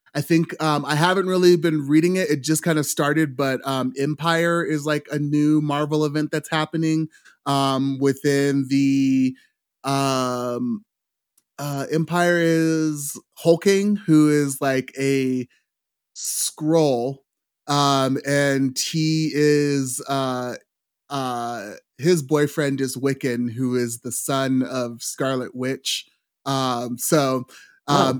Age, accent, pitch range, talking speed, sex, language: 30-49, American, 130-155 Hz, 125 wpm, male, English